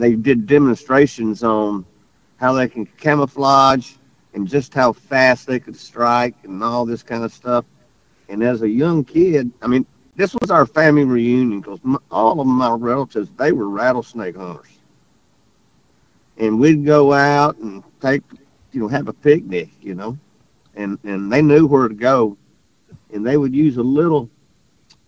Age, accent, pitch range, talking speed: 50-69, American, 120-150 Hz, 165 wpm